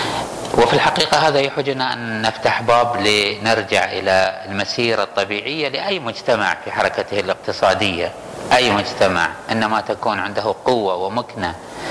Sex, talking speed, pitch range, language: male, 115 wpm, 105-130 Hz, Arabic